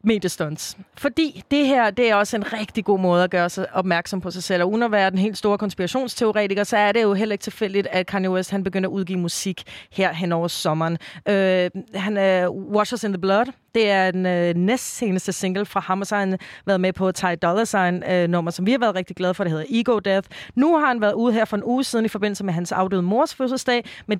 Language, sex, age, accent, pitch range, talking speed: Danish, female, 30-49, native, 185-220 Hz, 245 wpm